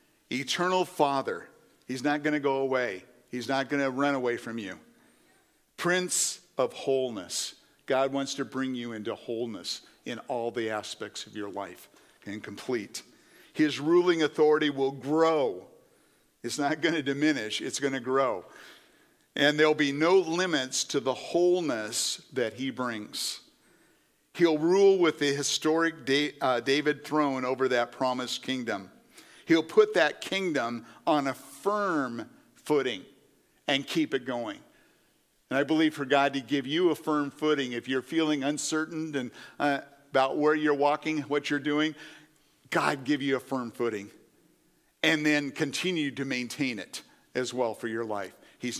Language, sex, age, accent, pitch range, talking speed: English, male, 50-69, American, 120-150 Hz, 150 wpm